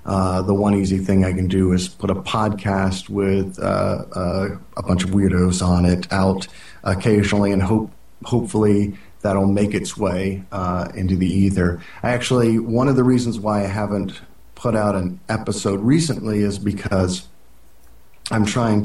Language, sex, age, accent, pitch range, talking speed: English, male, 40-59, American, 95-110 Hz, 160 wpm